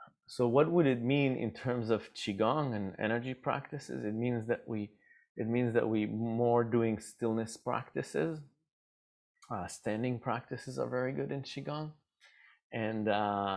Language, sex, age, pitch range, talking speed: English, male, 30-49, 110-135 Hz, 150 wpm